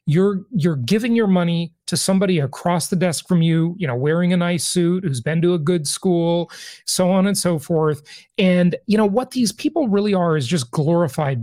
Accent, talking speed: American, 210 wpm